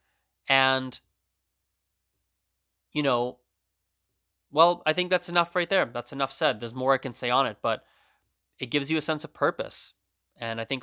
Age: 20-39